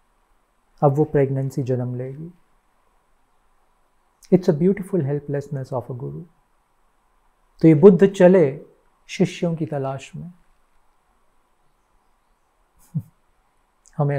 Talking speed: 90 wpm